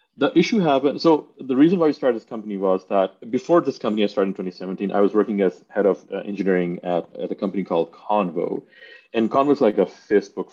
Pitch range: 95-140 Hz